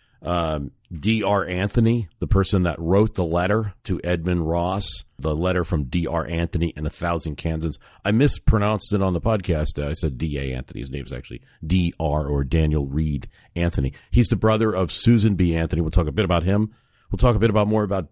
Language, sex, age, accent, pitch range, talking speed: English, male, 50-69, American, 85-110 Hz, 200 wpm